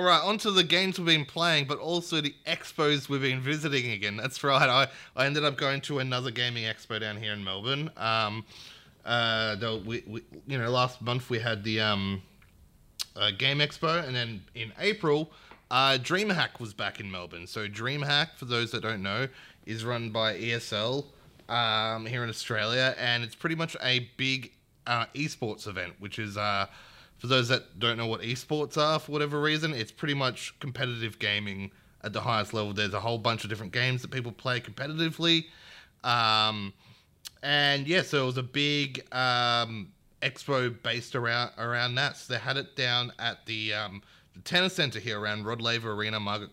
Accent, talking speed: Australian, 190 wpm